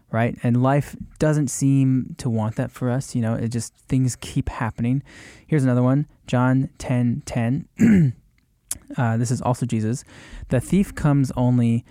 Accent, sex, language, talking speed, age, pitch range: American, male, English, 165 wpm, 20-39, 110-130 Hz